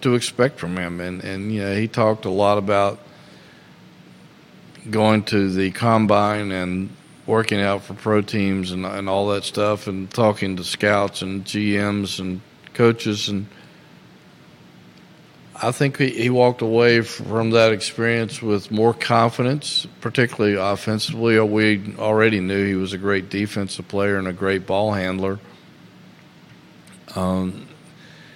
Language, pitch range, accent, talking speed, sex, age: English, 95-115 Hz, American, 140 wpm, male, 50-69